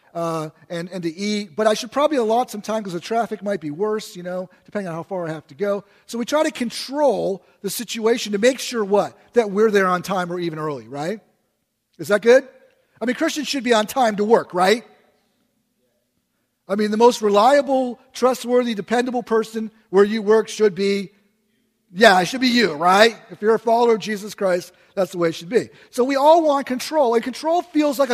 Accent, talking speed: American, 215 wpm